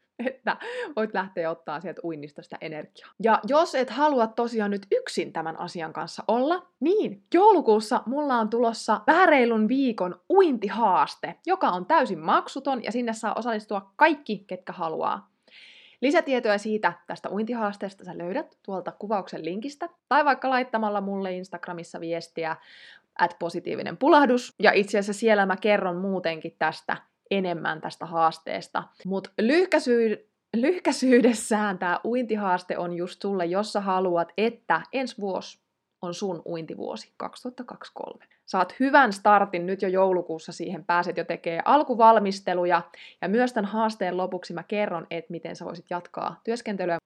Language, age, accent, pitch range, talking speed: Finnish, 20-39, native, 175-250 Hz, 140 wpm